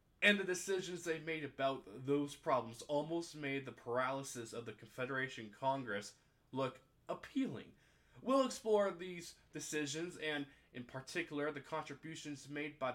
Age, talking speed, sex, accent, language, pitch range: 20-39, 135 wpm, male, American, English, 130-180 Hz